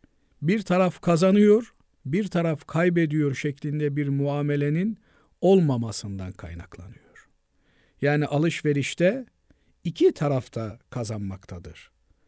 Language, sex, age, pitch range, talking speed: Turkish, male, 50-69, 125-180 Hz, 80 wpm